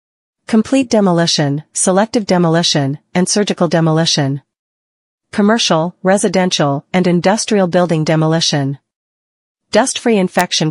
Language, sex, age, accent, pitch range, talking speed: English, female, 40-59, American, 150-195 Hz, 85 wpm